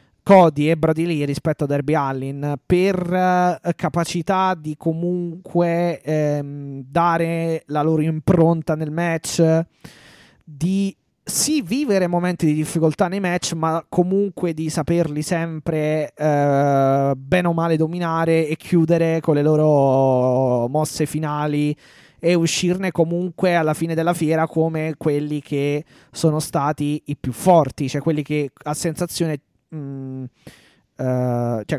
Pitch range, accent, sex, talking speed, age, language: 145-170 Hz, native, male, 125 wpm, 20-39, Italian